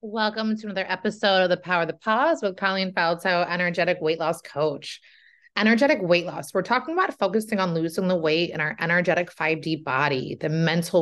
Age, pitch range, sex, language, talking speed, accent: 30-49, 170-220 Hz, female, English, 190 wpm, American